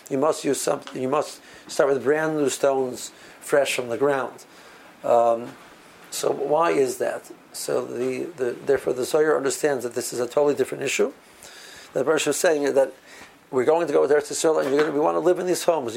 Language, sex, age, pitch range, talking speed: English, male, 60-79, 130-155 Hz, 205 wpm